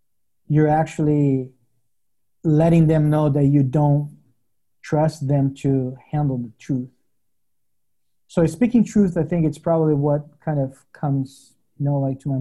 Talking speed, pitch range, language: 145 wpm, 135-180 Hz, English